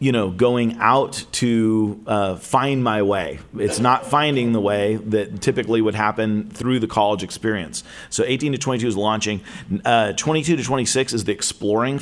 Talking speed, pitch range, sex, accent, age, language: 175 wpm, 110-130 Hz, male, American, 40-59, English